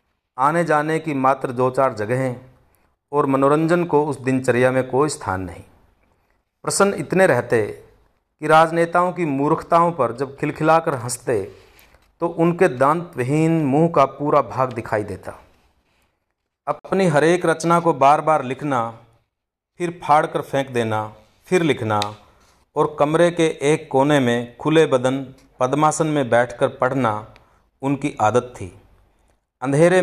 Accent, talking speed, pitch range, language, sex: native, 135 wpm, 115-155 Hz, Hindi, male